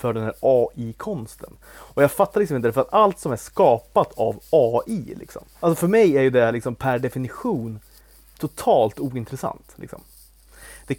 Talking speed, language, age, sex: 170 wpm, Swedish, 30-49, male